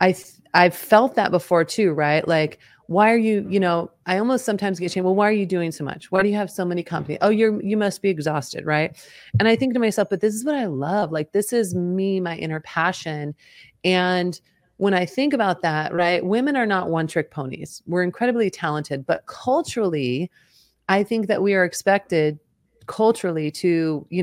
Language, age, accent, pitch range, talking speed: English, 30-49, American, 160-205 Hz, 210 wpm